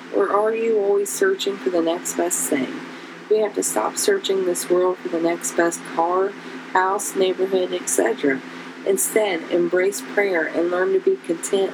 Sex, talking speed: female, 170 wpm